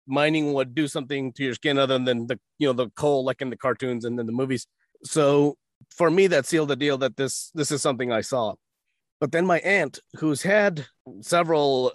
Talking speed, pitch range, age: 215 wpm, 125-150 Hz, 30-49